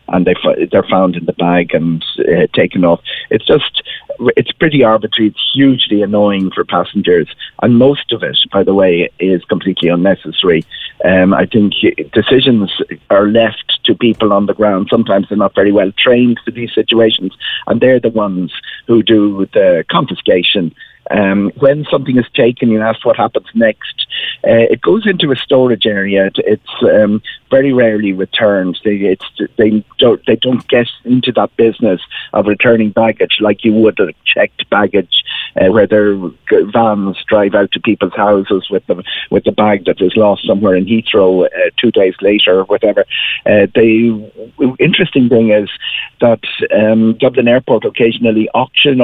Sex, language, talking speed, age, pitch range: male, English, 165 wpm, 30-49, 100-120 Hz